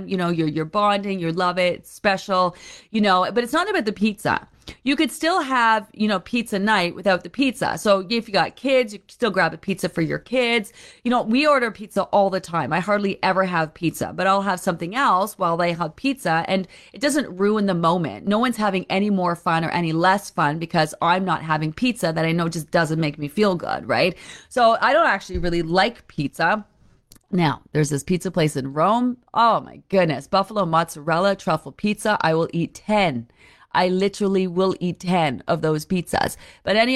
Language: English